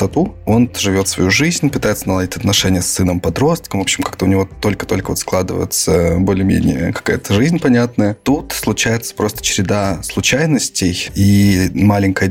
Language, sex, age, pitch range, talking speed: Russian, male, 20-39, 95-120 Hz, 135 wpm